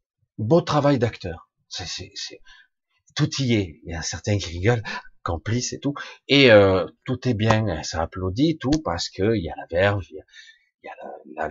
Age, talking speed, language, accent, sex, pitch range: 40-59, 200 wpm, French, French, male, 100-130 Hz